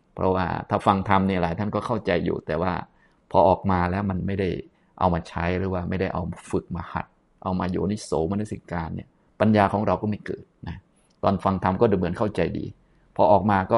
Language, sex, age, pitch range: Thai, male, 20-39, 90-105 Hz